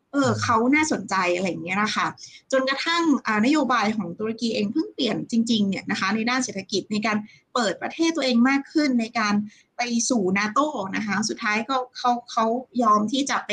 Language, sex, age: Thai, female, 20-39